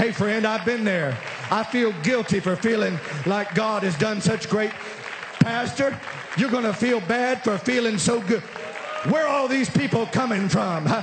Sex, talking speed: male, 180 wpm